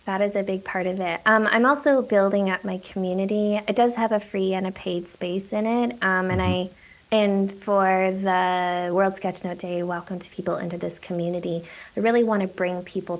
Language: English